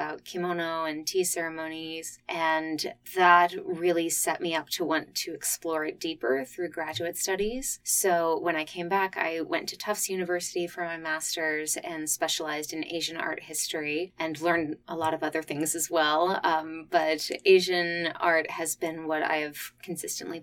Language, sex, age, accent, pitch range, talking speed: English, female, 20-39, American, 155-180 Hz, 170 wpm